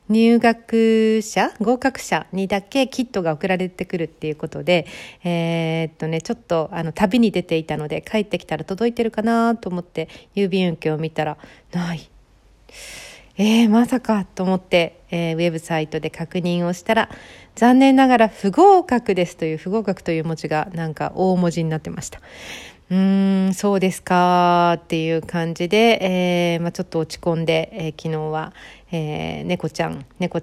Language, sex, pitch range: Japanese, female, 165-220 Hz